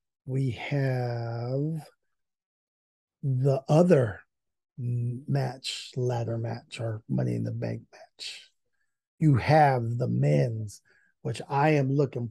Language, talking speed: English, 100 wpm